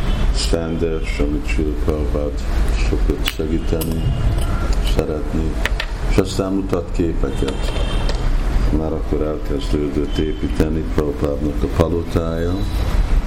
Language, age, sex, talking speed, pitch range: Hungarian, 50-69, male, 75 wpm, 70-85 Hz